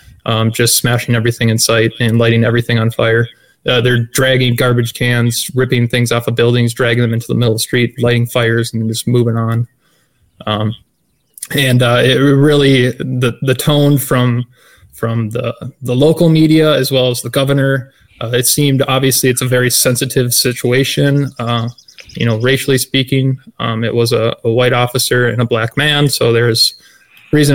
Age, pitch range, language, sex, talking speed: 20-39, 120-130 Hz, English, male, 180 wpm